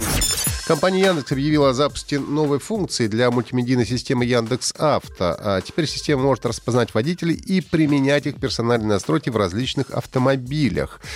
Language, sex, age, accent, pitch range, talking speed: Russian, male, 30-49, native, 105-150 Hz, 135 wpm